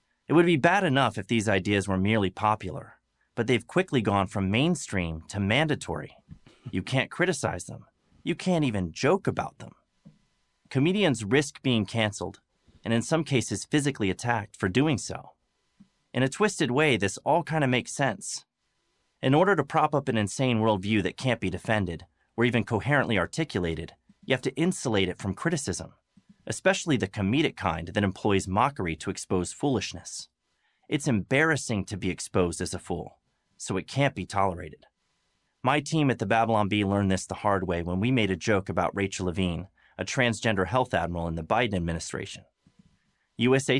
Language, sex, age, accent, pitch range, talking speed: English, male, 30-49, American, 95-130 Hz, 175 wpm